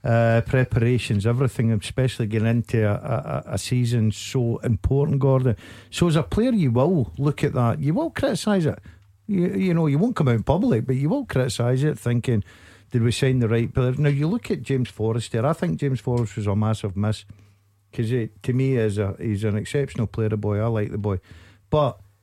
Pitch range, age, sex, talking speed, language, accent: 110-145 Hz, 50-69, male, 205 wpm, English, British